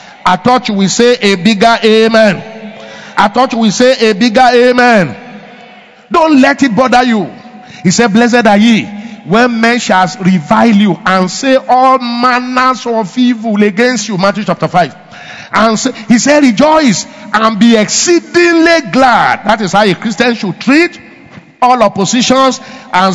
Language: English